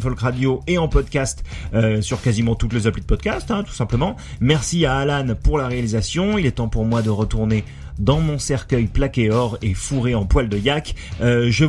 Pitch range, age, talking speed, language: 115-145 Hz, 30-49, 215 wpm, French